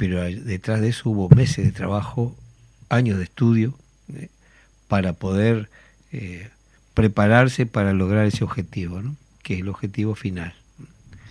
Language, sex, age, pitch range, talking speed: Spanish, male, 50-69, 95-125 Hz, 140 wpm